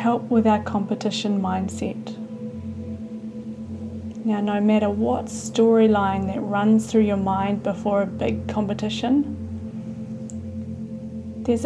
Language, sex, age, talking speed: English, female, 30-49, 105 wpm